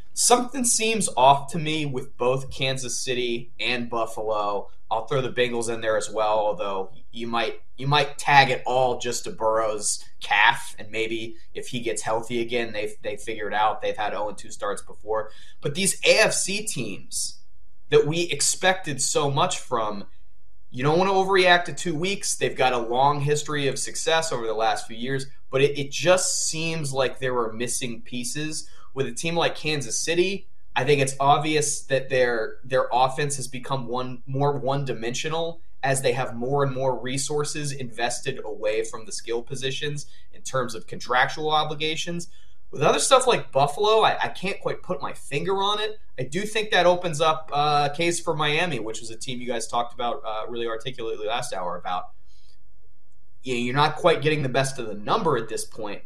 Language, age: English, 20-39